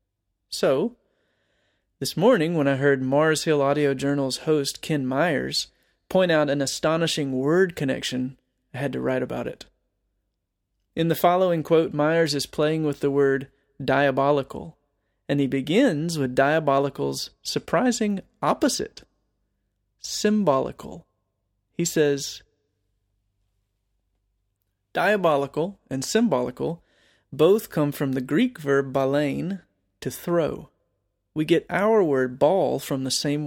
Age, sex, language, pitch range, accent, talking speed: 30-49, male, English, 130-160 Hz, American, 120 wpm